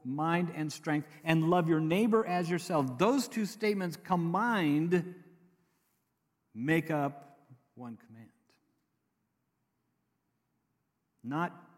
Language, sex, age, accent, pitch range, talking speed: English, male, 50-69, American, 135-190 Hz, 90 wpm